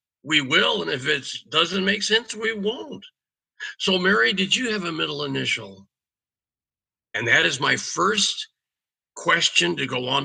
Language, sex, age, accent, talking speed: English, male, 50-69, American, 160 wpm